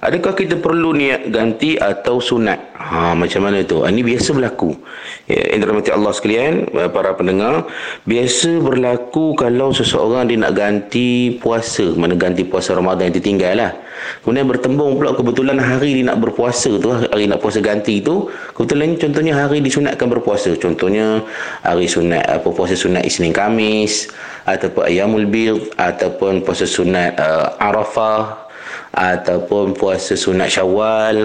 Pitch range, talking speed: 100-125 Hz, 145 wpm